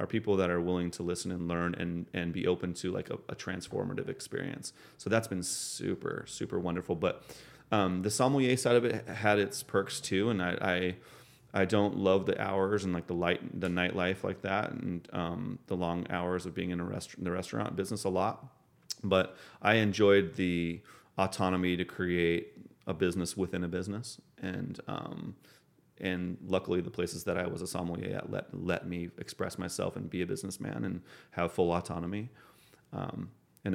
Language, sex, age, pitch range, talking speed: English, male, 30-49, 85-105 Hz, 190 wpm